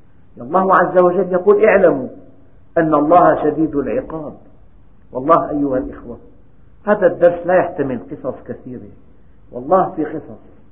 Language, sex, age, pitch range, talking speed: Arabic, male, 50-69, 130-175 Hz, 120 wpm